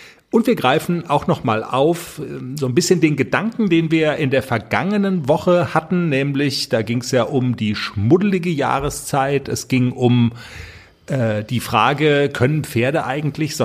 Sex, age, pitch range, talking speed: male, 40-59, 120-170 Hz, 165 wpm